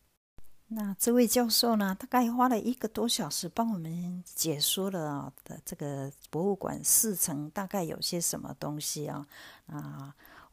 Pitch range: 150-215 Hz